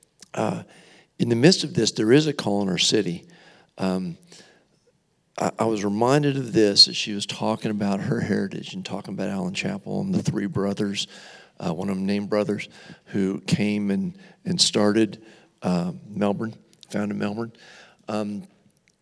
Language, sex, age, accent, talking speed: English, male, 50-69, American, 165 wpm